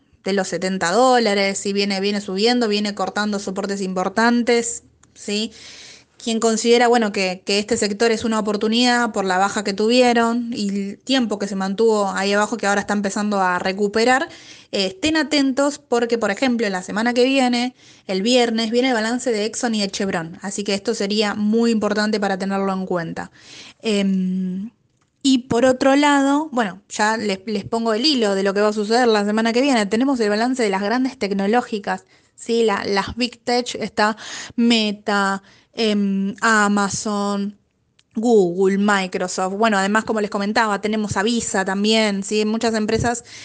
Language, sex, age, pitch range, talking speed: Spanish, female, 20-39, 200-235 Hz, 170 wpm